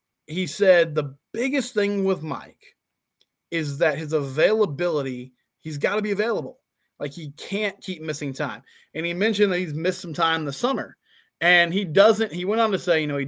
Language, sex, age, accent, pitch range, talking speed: English, male, 20-39, American, 145-185 Hz, 195 wpm